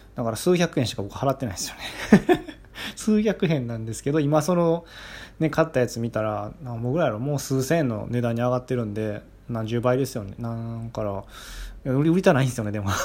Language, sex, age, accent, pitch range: Japanese, male, 20-39, native, 115-155 Hz